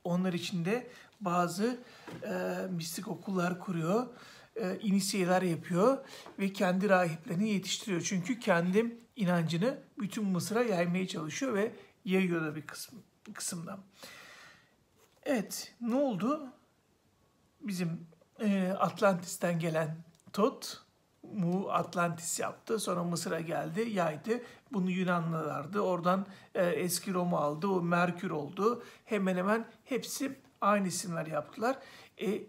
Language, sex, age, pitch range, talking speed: Turkish, male, 60-79, 175-220 Hz, 105 wpm